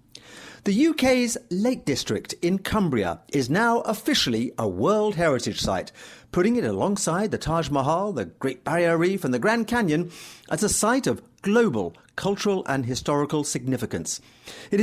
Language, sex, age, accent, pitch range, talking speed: English, male, 40-59, British, 135-215 Hz, 150 wpm